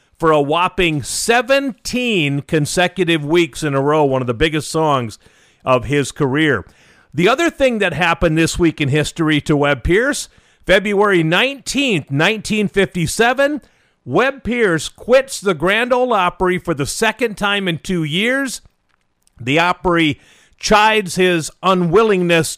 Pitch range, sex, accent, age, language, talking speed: 135-190 Hz, male, American, 50-69, English, 135 wpm